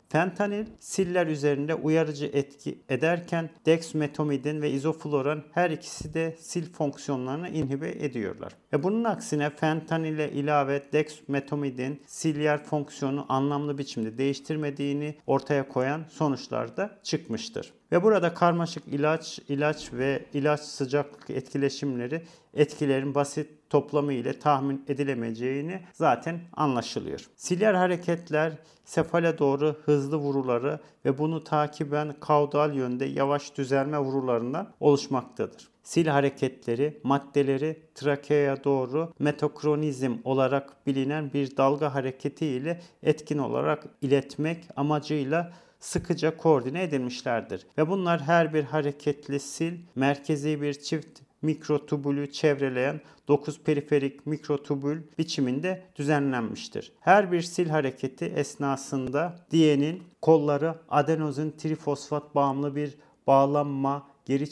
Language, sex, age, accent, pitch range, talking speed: Turkish, male, 50-69, native, 140-155 Hz, 105 wpm